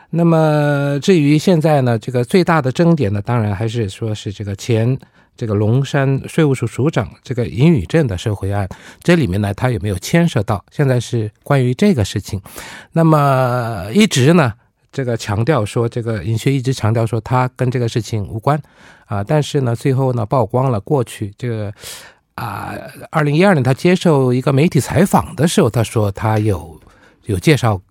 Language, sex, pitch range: Korean, male, 110-140 Hz